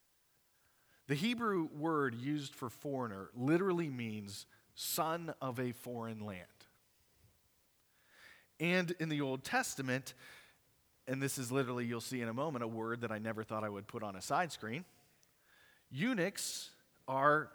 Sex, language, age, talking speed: male, English, 40-59, 145 wpm